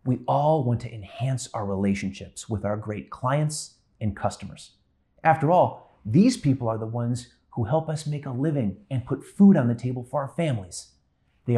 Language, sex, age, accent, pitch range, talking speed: English, male, 30-49, American, 105-155 Hz, 185 wpm